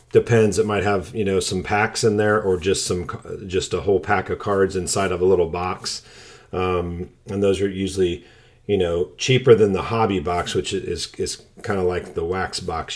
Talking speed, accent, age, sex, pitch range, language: 210 wpm, American, 40-59, male, 90-110 Hz, English